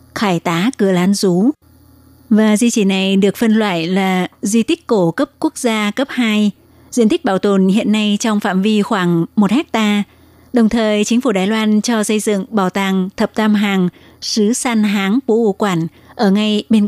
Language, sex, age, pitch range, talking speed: Vietnamese, female, 20-39, 190-220 Hz, 195 wpm